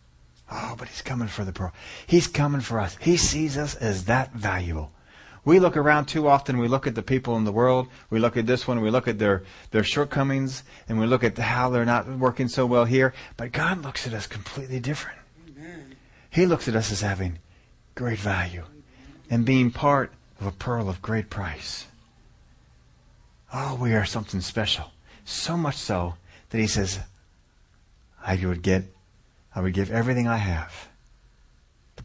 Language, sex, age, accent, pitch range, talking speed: English, male, 40-59, American, 90-130 Hz, 180 wpm